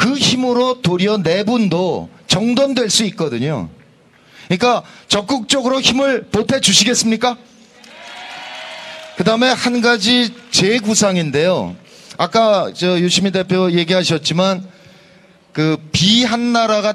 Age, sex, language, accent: 40-59, male, Korean, native